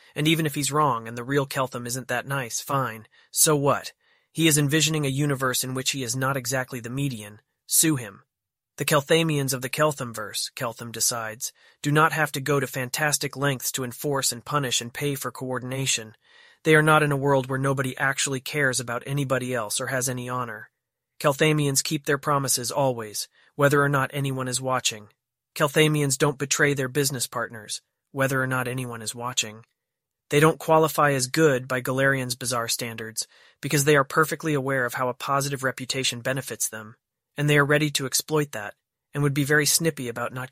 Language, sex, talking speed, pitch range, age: English, male, 190 wpm, 125-145 Hz, 30-49